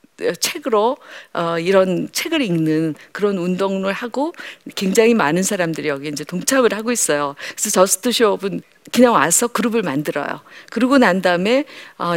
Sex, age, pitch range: female, 50-69, 180-260 Hz